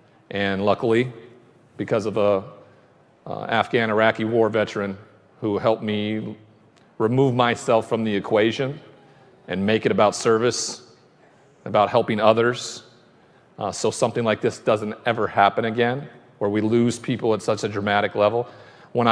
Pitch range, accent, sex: 105-120 Hz, American, male